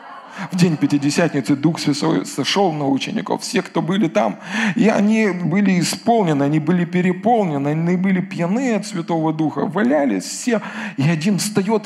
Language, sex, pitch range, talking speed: Russian, male, 170-225 Hz, 150 wpm